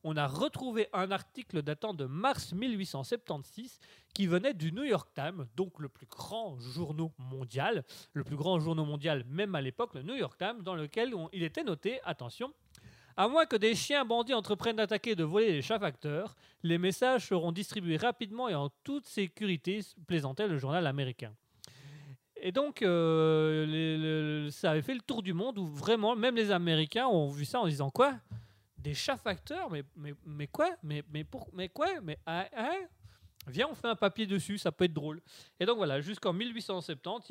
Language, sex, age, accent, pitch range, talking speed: French, male, 30-49, French, 145-200 Hz, 200 wpm